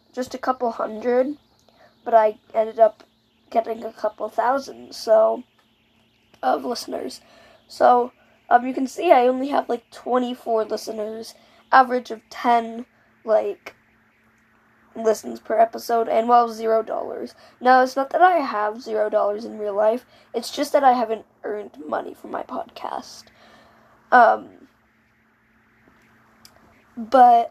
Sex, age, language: female, 10-29, English